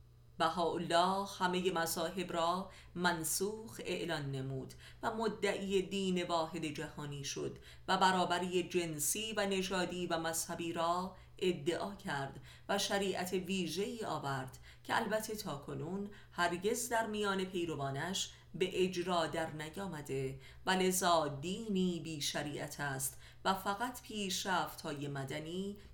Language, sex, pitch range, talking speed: Persian, female, 150-195 Hz, 115 wpm